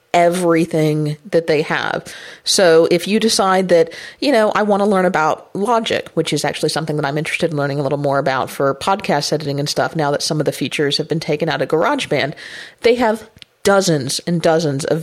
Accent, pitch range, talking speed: American, 155-175 Hz, 210 wpm